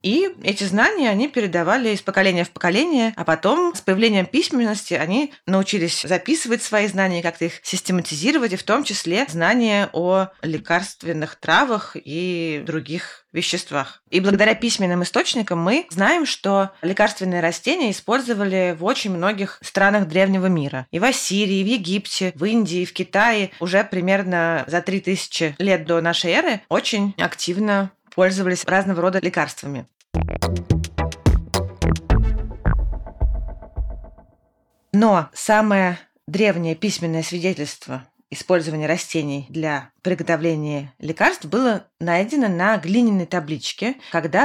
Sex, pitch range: female, 170-215 Hz